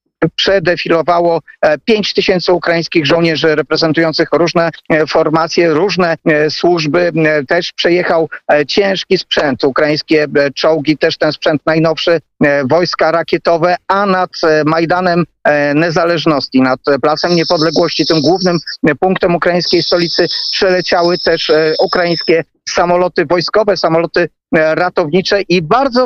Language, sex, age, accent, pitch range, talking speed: Polish, male, 40-59, native, 155-175 Hz, 100 wpm